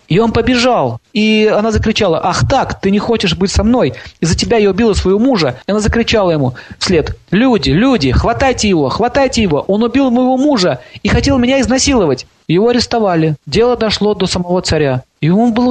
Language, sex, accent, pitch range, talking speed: Russian, male, native, 155-210 Hz, 185 wpm